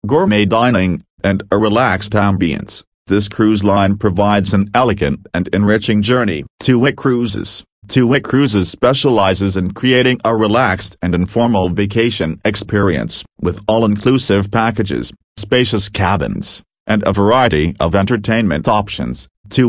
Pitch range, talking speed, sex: 95-115 Hz, 130 wpm, male